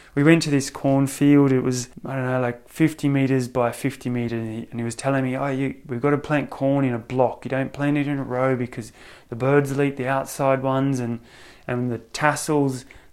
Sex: male